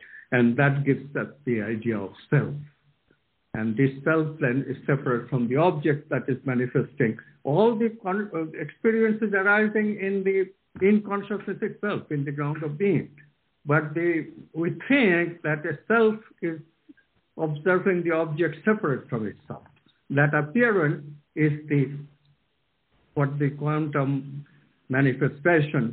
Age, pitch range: 60-79, 135-160 Hz